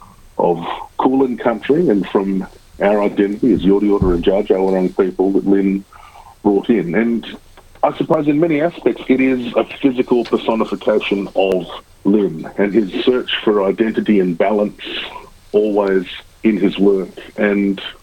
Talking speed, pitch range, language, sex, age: 145 wpm, 95-110 Hz, English, male, 50-69